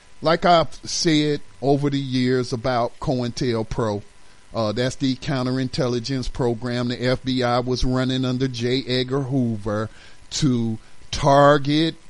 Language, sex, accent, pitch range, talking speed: English, male, American, 115-155 Hz, 115 wpm